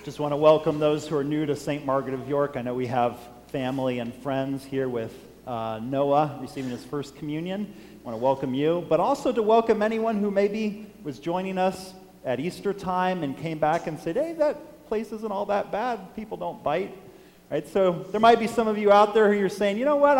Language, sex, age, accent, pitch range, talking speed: English, male, 40-59, American, 130-200 Hz, 230 wpm